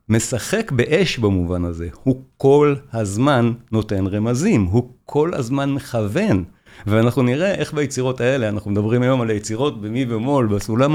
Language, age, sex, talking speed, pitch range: Hebrew, 50-69, male, 140 wpm, 110-145 Hz